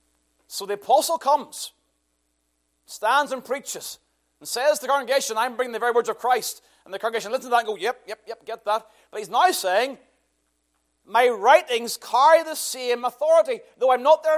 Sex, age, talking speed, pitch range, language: male, 30-49, 190 wpm, 195-280 Hz, English